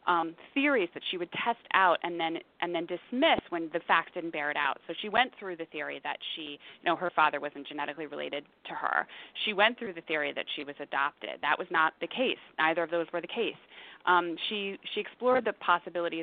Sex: female